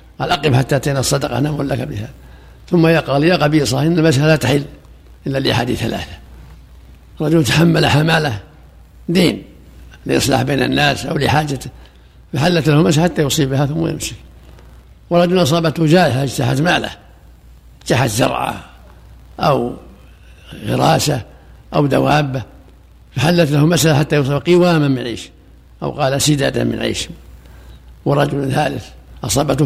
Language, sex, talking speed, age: Arabic, male, 125 wpm, 60-79